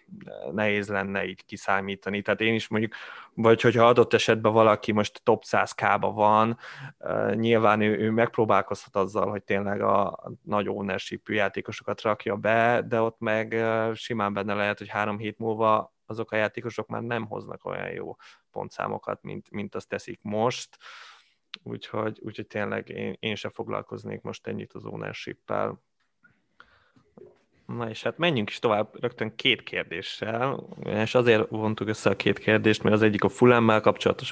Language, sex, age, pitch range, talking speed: Hungarian, male, 20-39, 105-120 Hz, 150 wpm